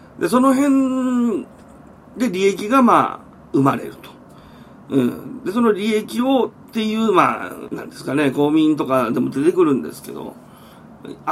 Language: Japanese